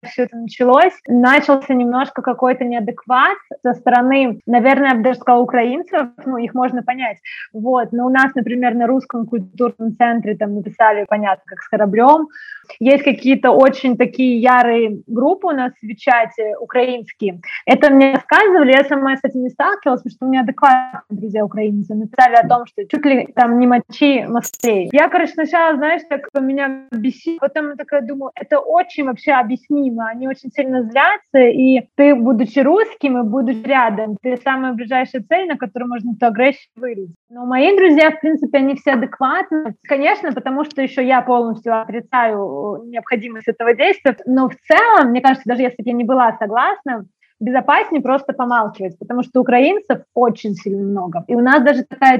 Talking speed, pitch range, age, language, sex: 175 wpm, 230-275 Hz, 20-39, Russian, female